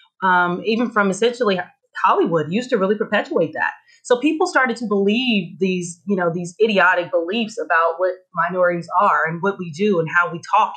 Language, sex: English, female